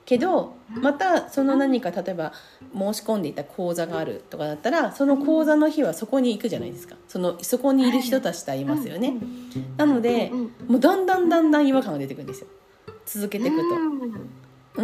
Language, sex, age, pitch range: Japanese, female, 40-59, 200-305 Hz